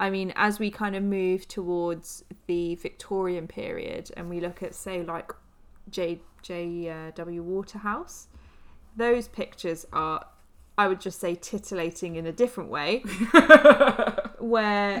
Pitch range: 175-220 Hz